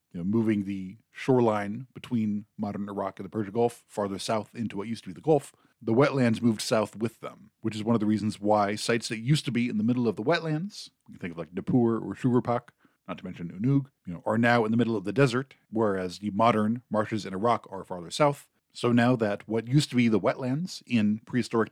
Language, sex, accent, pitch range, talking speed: English, male, American, 105-130 Hz, 240 wpm